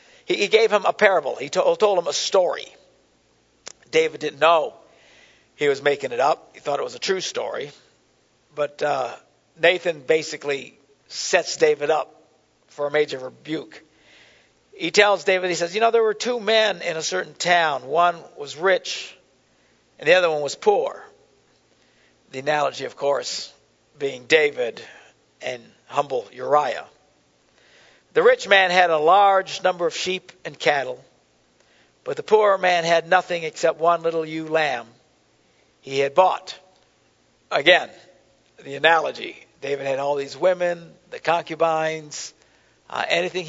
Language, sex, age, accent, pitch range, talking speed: English, male, 60-79, American, 150-205 Hz, 145 wpm